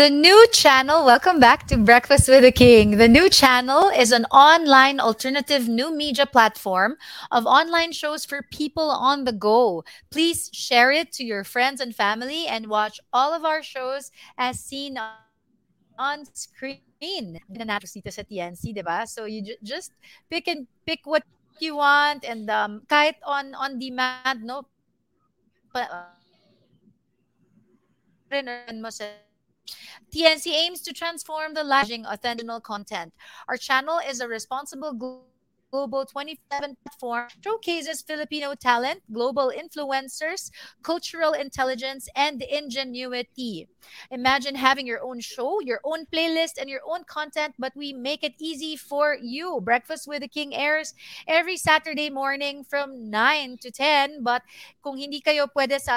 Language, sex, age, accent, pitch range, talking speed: English, female, 30-49, Filipino, 240-300 Hz, 135 wpm